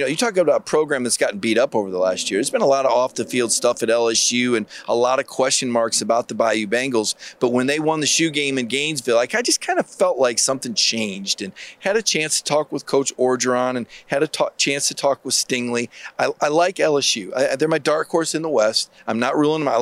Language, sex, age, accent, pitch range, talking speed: English, male, 40-59, American, 125-160 Hz, 265 wpm